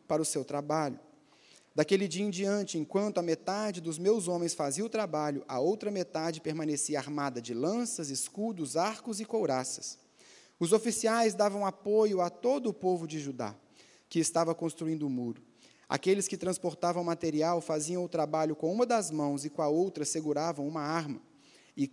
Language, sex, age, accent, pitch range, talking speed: Portuguese, male, 30-49, Brazilian, 150-190 Hz, 170 wpm